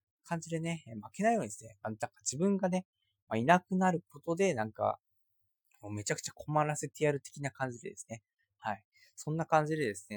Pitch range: 105-155 Hz